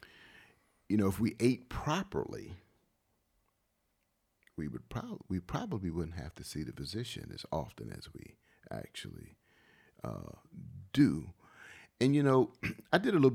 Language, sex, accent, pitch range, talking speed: English, male, American, 85-115 Hz, 140 wpm